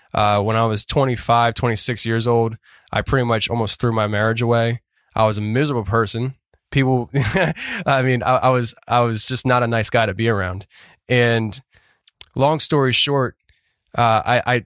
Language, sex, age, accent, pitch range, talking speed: English, male, 20-39, American, 110-135 Hz, 170 wpm